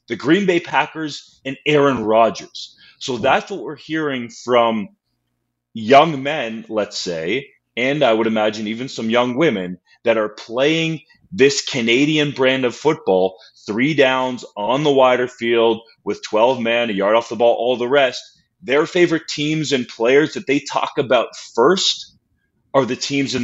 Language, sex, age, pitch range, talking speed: English, male, 30-49, 110-145 Hz, 165 wpm